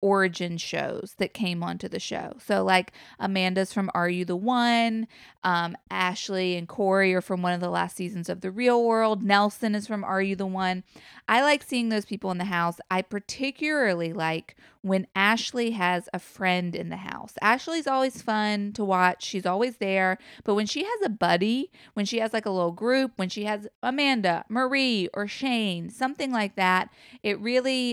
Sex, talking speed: female, 190 wpm